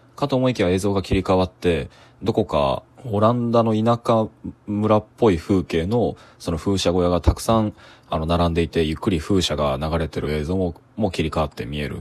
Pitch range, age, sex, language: 80-110 Hz, 20-39, male, Japanese